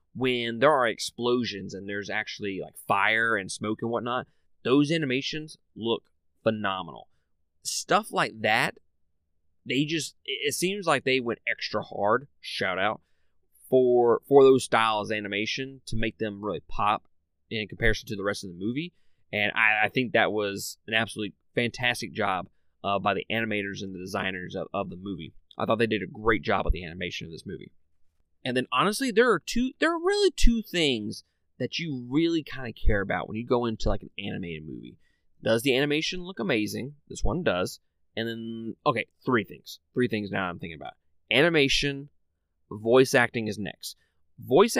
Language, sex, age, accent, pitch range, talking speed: English, male, 30-49, American, 100-140 Hz, 180 wpm